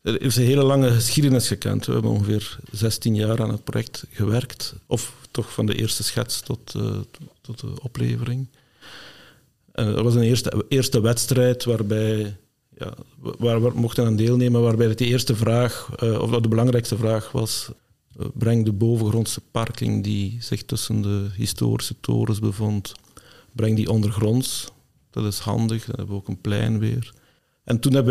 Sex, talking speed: male, 160 wpm